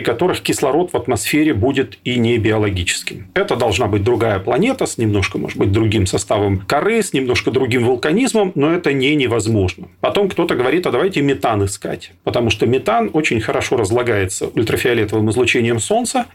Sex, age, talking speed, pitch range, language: male, 40-59, 165 wpm, 105-145 Hz, Russian